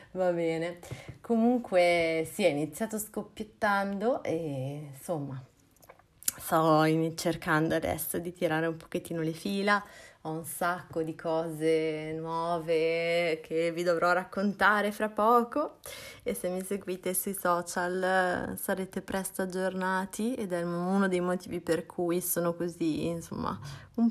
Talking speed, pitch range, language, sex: 125 wpm, 155-185 Hz, Italian, female